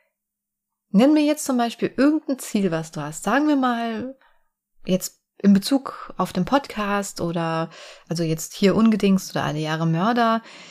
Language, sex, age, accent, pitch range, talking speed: German, female, 30-49, German, 180-230 Hz, 155 wpm